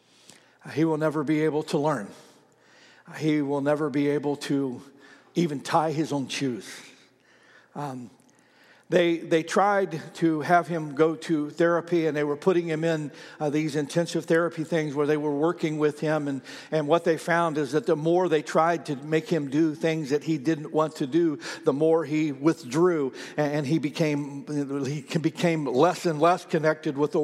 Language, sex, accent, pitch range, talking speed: English, male, American, 150-180 Hz, 180 wpm